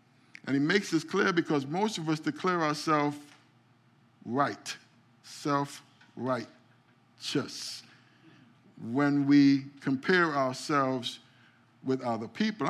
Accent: American